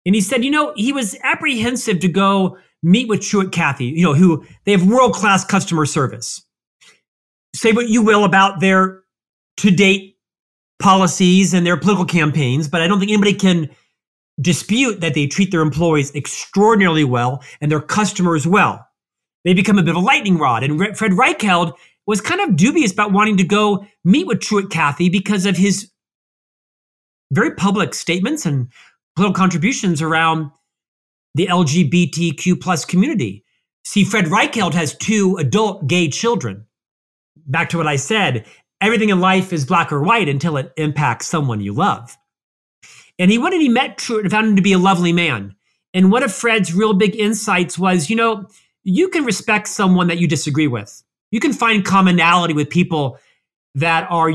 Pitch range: 160-205 Hz